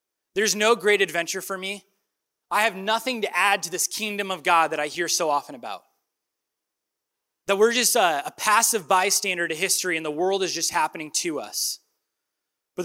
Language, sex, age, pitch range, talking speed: English, male, 20-39, 190-280 Hz, 185 wpm